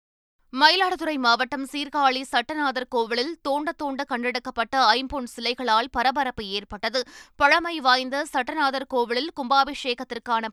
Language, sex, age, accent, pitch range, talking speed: Tamil, female, 20-39, native, 235-285 Hz, 95 wpm